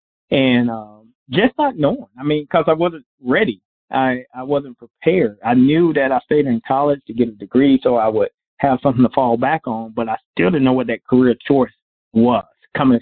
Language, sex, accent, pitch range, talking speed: English, male, American, 115-140 Hz, 210 wpm